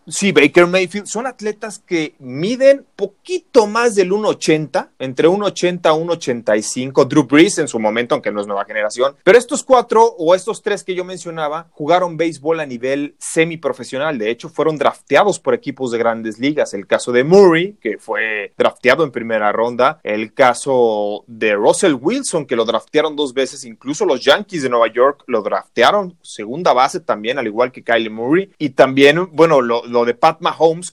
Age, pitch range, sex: 30-49, 125-180 Hz, male